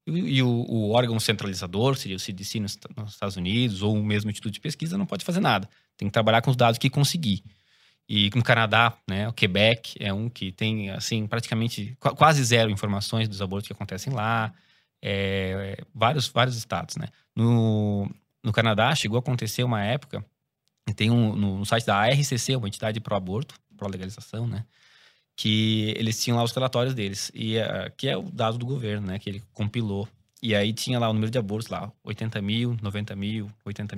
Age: 20-39